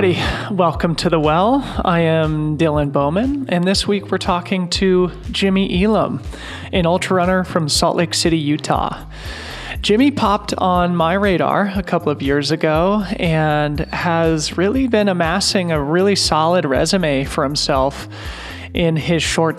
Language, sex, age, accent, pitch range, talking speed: English, male, 30-49, American, 145-180 Hz, 145 wpm